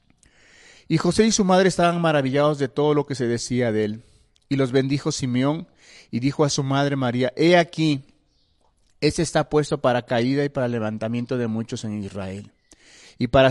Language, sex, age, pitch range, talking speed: Spanish, male, 40-59, 125-155 Hz, 180 wpm